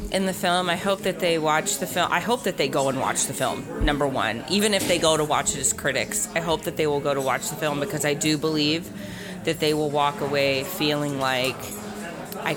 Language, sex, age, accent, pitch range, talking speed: English, female, 30-49, American, 145-175 Hz, 250 wpm